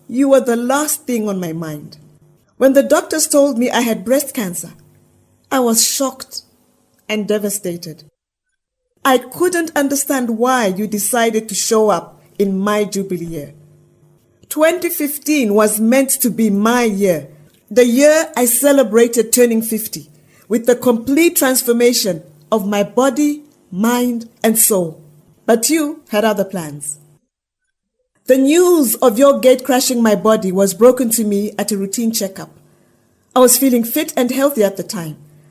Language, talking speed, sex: English, 150 wpm, female